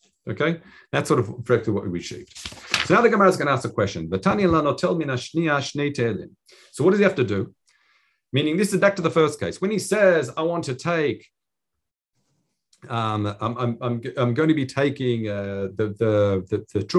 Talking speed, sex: 190 wpm, male